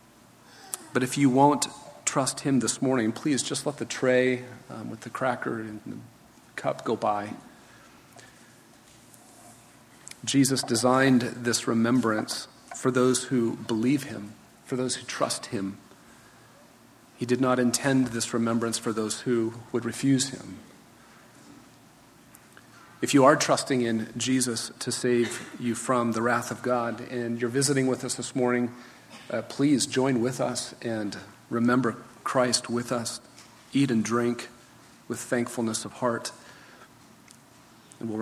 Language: English